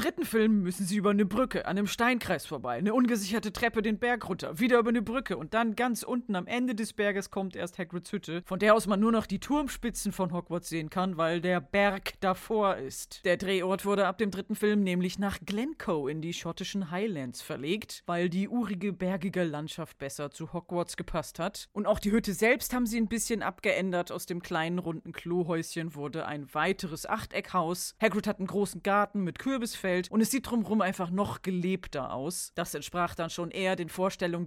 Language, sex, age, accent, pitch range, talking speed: German, female, 40-59, German, 175-225 Hz, 205 wpm